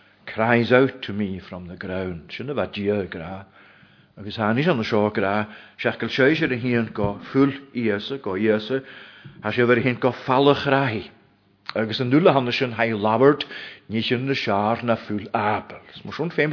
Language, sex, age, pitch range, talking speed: English, male, 50-69, 105-125 Hz, 80 wpm